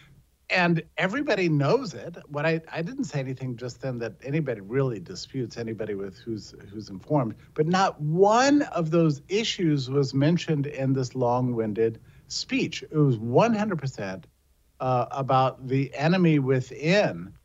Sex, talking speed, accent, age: male, 140 wpm, American, 50-69